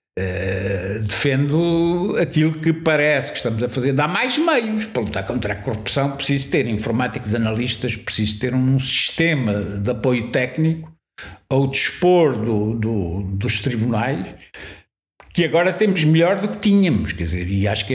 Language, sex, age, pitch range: Portuguese, male, 60-79, 105-165 Hz